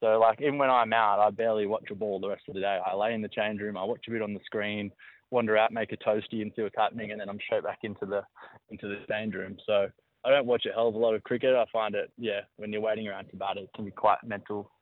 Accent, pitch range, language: Australian, 105-115 Hz, English